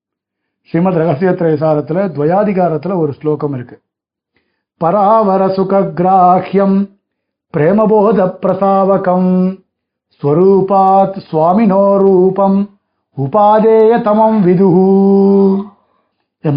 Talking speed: 45 wpm